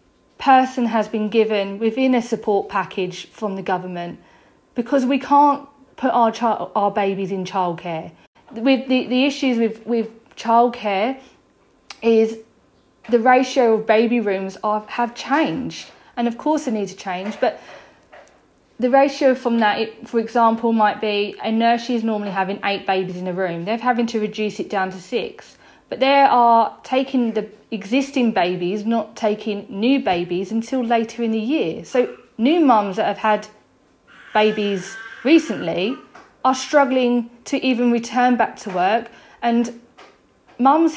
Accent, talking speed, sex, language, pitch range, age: British, 155 wpm, female, English, 205-250 Hz, 40-59